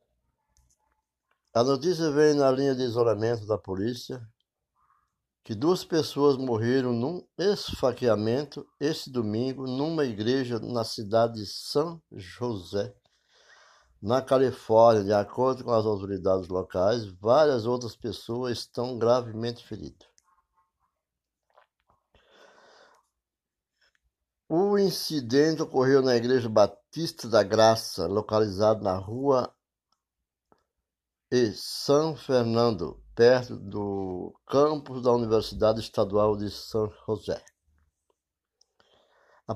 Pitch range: 105-140 Hz